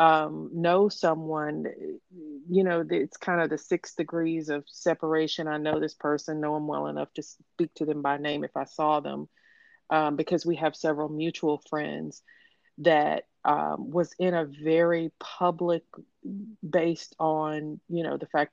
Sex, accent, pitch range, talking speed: female, American, 150-175 Hz, 165 wpm